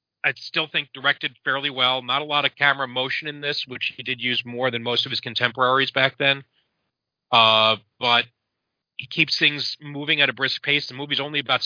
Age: 40-59